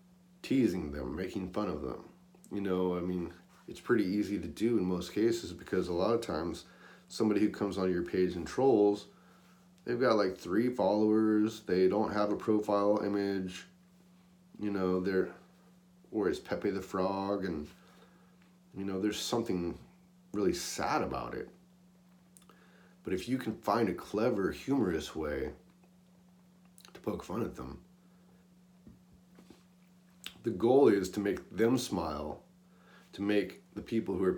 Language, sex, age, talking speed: English, male, 30-49, 150 wpm